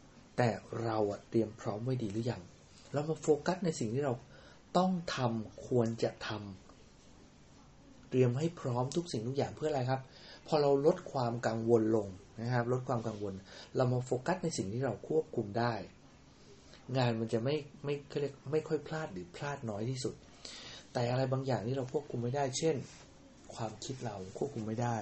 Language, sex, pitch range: English, male, 115-145 Hz